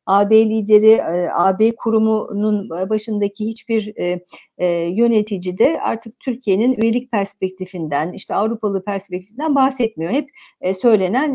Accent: native